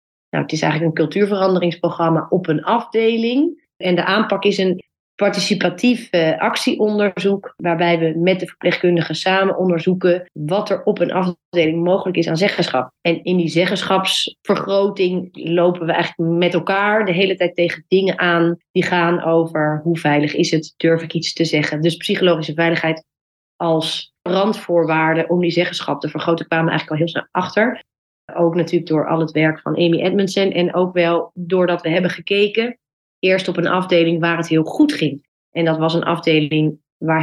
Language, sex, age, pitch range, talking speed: Dutch, female, 30-49, 165-190 Hz, 175 wpm